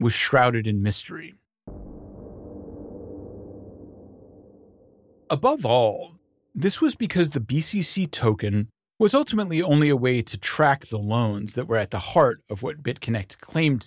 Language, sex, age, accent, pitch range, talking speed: English, male, 30-49, American, 105-160 Hz, 130 wpm